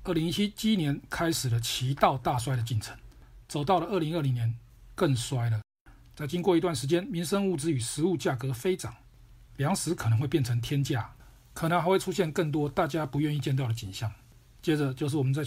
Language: Chinese